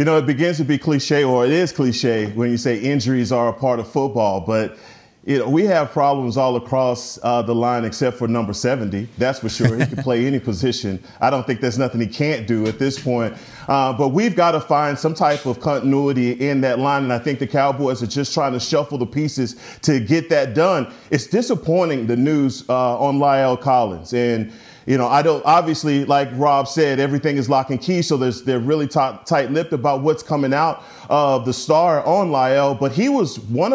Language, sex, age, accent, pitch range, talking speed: English, male, 30-49, American, 125-155 Hz, 220 wpm